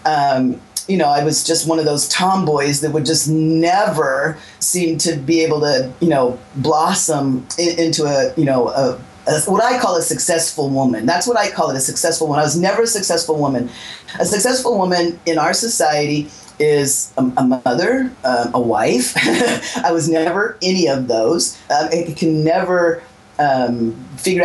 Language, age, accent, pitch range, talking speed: English, 40-59, American, 150-180 Hz, 180 wpm